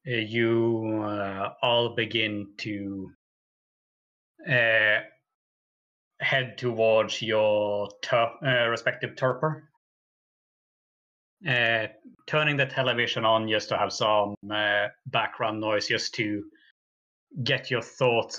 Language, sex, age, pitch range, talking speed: English, male, 30-49, 105-135 Hz, 90 wpm